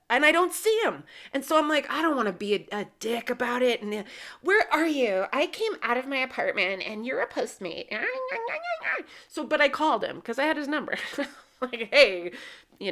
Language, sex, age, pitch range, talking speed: English, female, 30-49, 215-345 Hz, 215 wpm